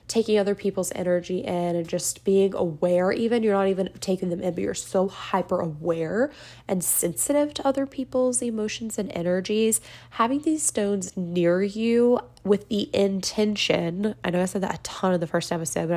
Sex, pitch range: female, 175-215 Hz